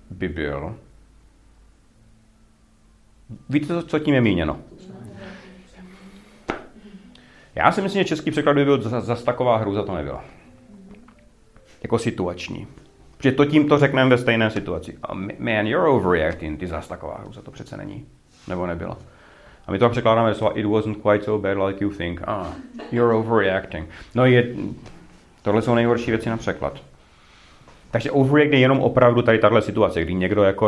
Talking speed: 150 wpm